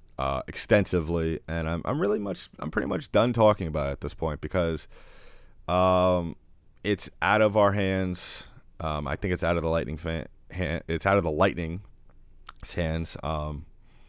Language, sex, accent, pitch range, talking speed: English, male, American, 80-95 Hz, 175 wpm